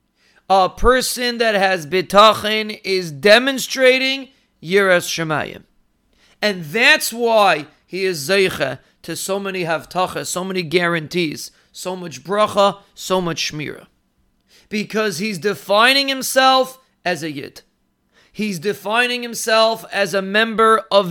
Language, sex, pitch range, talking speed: English, male, 185-230 Hz, 120 wpm